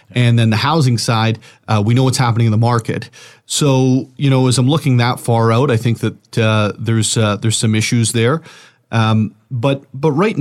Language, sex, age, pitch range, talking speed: English, male, 40-59, 115-140 Hz, 210 wpm